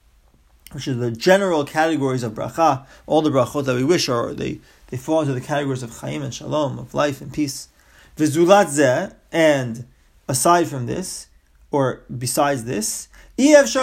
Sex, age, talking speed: male, 30-49, 150 wpm